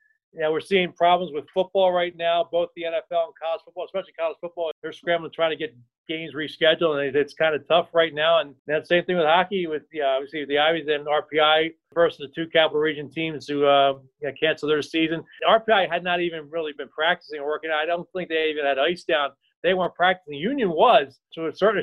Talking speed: 230 wpm